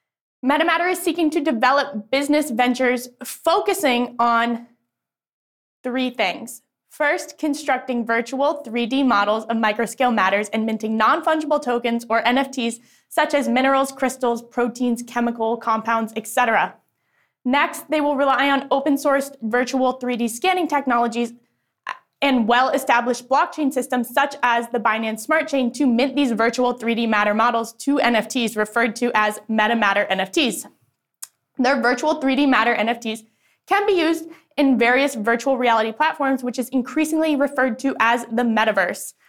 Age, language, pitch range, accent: 10-29, English, 235-280 Hz, American